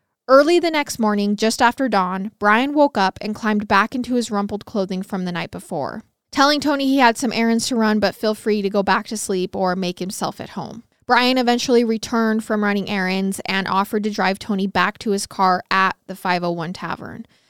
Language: English